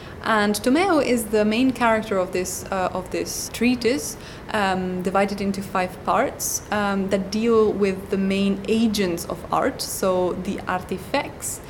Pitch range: 190-220 Hz